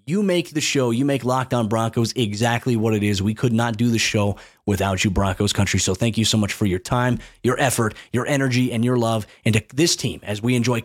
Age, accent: 30-49, American